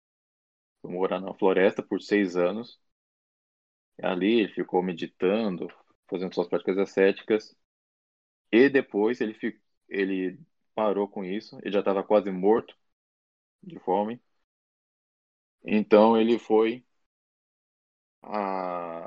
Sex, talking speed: male, 105 wpm